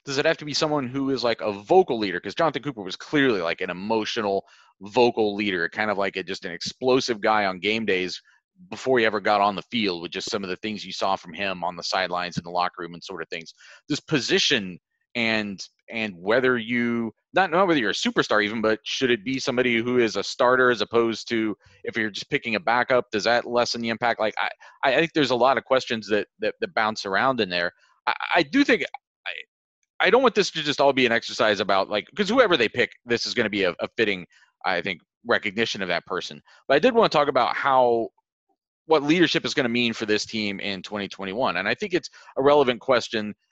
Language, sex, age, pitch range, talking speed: English, male, 30-49, 105-140 Hz, 240 wpm